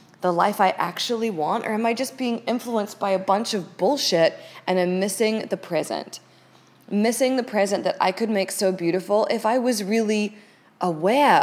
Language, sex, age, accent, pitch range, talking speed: English, female, 20-39, American, 170-215 Hz, 185 wpm